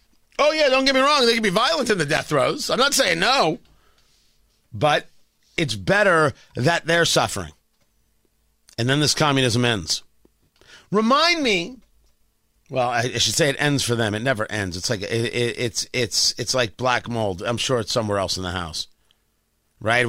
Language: English